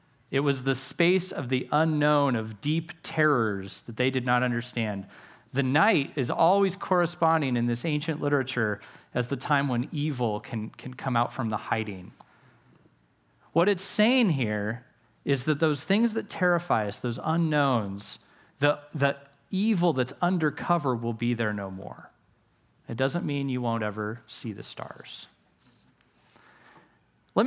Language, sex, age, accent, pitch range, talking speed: English, male, 30-49, American, 115-145 Hz, 155 wpm